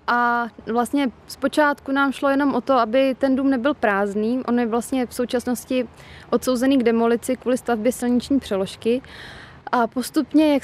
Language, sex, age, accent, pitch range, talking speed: Czech, female, 20-39, native, 235-255 Hz, 160 wpm